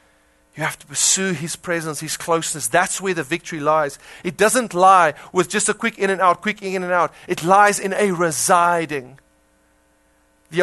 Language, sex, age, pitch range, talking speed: English, male, 30-49, 135-195 Hz, 185 wpm